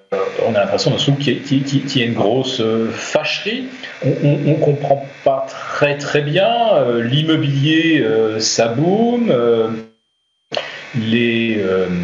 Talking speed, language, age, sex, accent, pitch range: 100 wpm, French, 40-59, male, French, 115-145 Hz